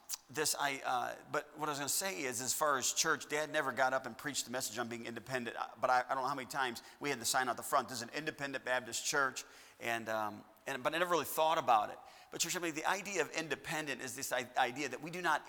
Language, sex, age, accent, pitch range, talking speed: English, male, 40-59, American, 120-155 Hz, 270 wpm